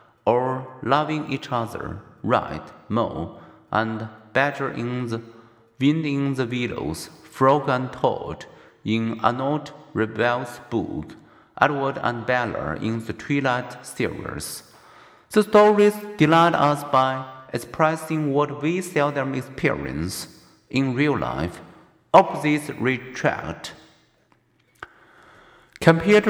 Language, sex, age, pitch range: Chinese, male, 50-69, 120-155 Hz